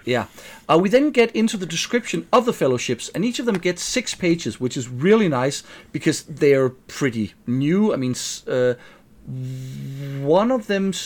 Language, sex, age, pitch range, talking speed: English, male, 40-59, 130-180 Hz, 180 wpm